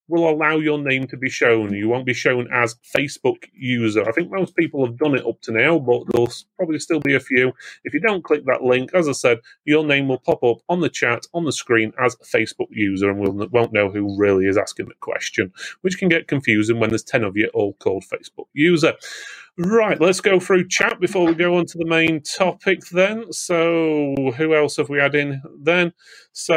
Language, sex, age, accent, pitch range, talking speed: English, male, 30-49, British, 125-175 Hz, 225 wpm